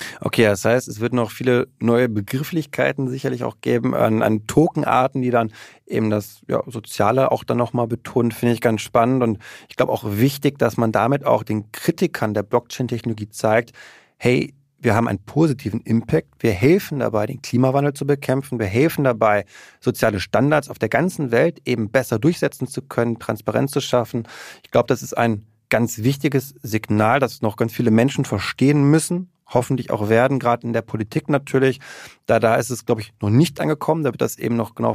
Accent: German